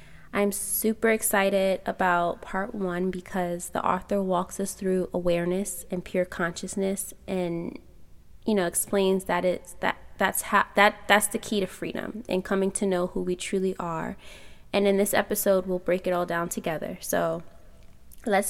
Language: English